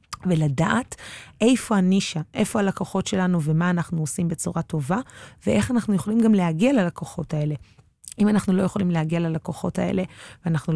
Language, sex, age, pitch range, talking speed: Hebrew, female, 20-39, 165-195 Hz, 145 wpm